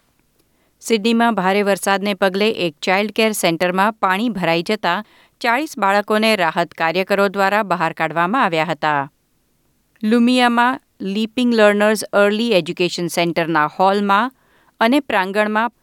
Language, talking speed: Gujarati, 110 wpm